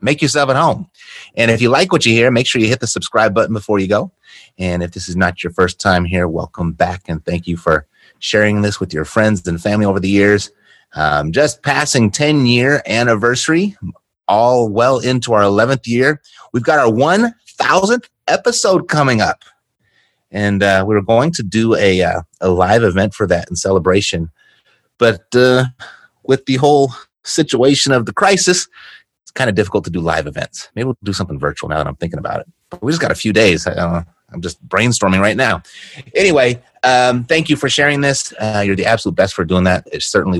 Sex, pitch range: male, 95-130 Hz